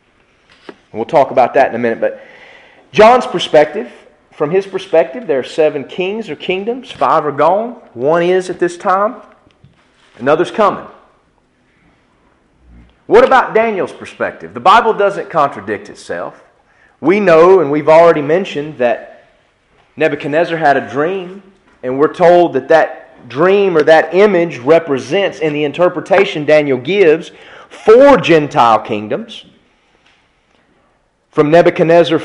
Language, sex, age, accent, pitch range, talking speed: English, male, 30-49, American, 135-185 Hz, 130 wpm